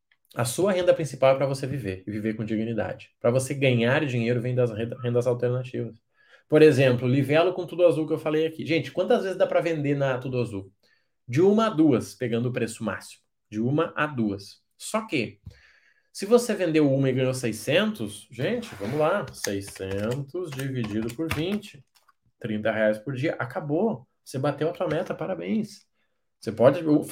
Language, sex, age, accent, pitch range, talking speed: Portuguese, male, 20-39, Brazilian, 115-165 Hz, 175 wpm